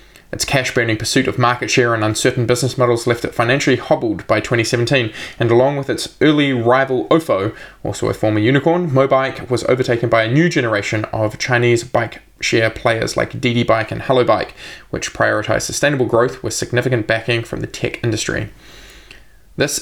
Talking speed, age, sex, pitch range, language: 170 wpm, 20-39, male, 110-130 Hz, English